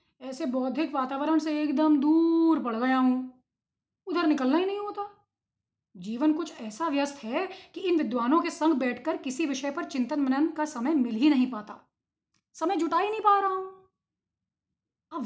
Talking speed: 175 wpm